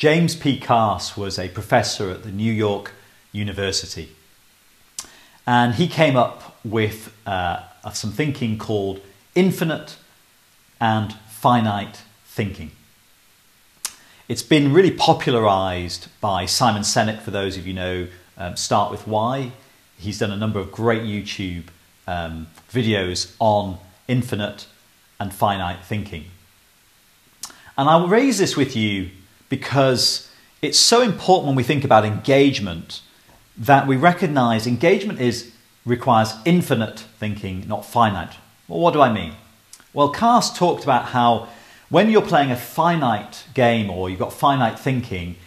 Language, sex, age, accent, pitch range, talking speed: English, male, 40-59, British, 100-135 Hz, 135 wpm